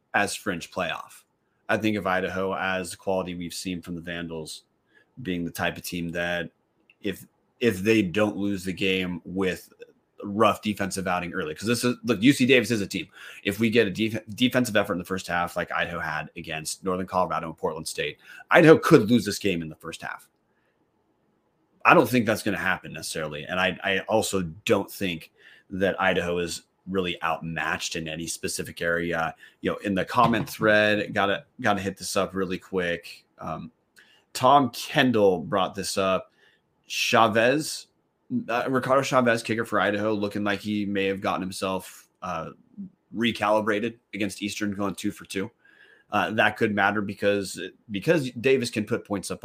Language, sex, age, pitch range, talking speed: English, male, 30-49, 90-110 Hz, 175 wpm